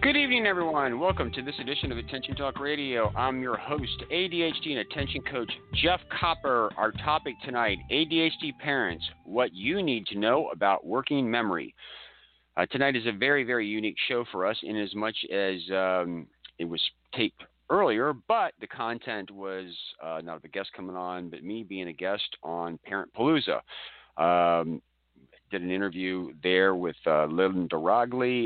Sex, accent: male, American